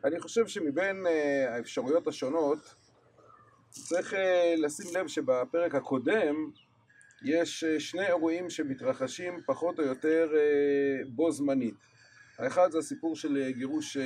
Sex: male